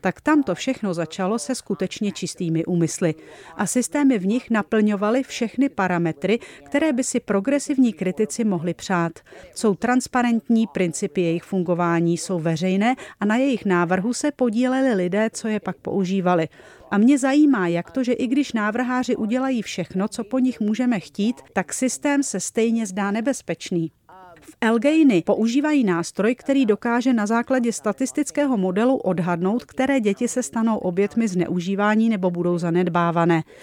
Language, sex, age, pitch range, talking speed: Czech, female, 40-59, 185-245 Hz, 150 wpm